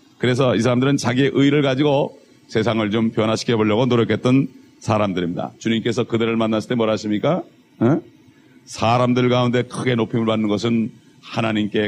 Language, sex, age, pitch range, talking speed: English, male, 40-59, 110-130 Hz, 125 wpm